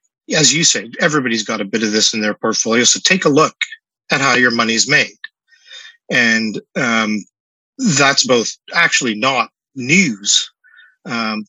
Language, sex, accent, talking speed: English, male, American, 155 wpm